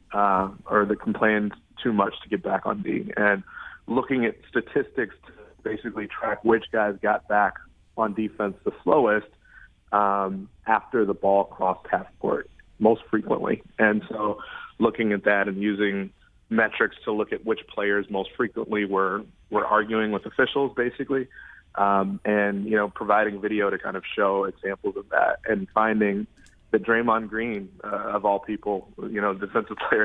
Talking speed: 165 wpm